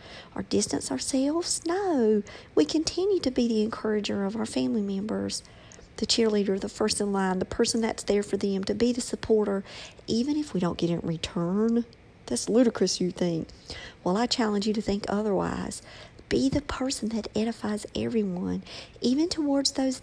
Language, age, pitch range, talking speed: English, 50-69, 195-255 Hz, 170 wpm